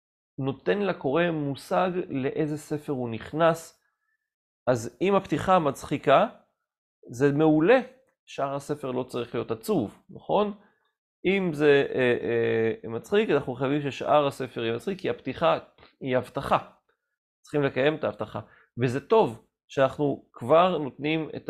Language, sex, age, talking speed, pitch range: Hebrew, male, 30-49, 120 wpm, 140-210 Hz